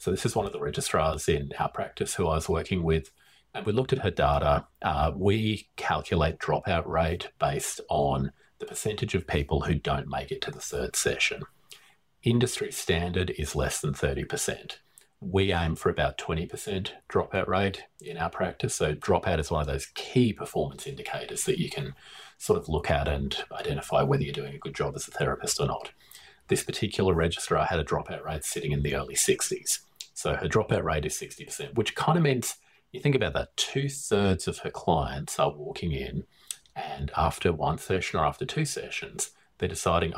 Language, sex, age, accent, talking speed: English, male, 40-59, Australian, 190 wpm